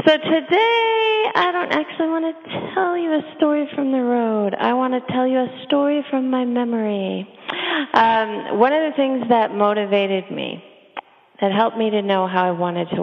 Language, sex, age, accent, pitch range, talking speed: English, female, 30-49, American, 185-250 Hz, 190 wpm